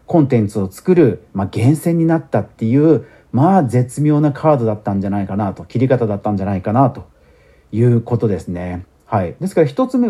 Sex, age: male, 40-59